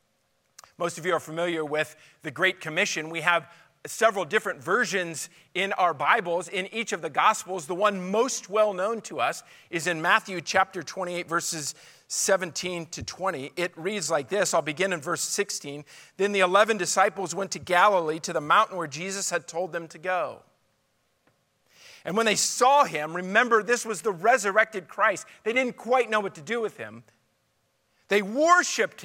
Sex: male